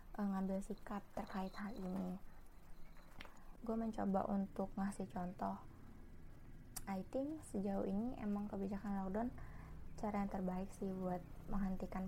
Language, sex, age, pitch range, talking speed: Indonesian, female, 20-39, 190-215 Hz, 115 wpm